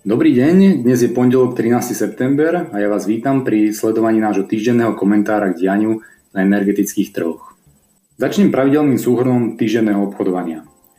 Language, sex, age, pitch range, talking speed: Slovak, male, 30-49, 105-125 Hz, 140 wpm